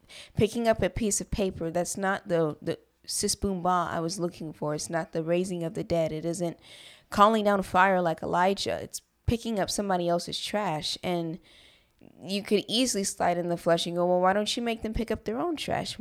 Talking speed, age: 215 wpm, 20-39